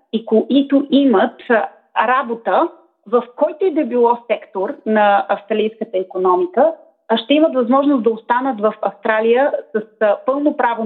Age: 30-49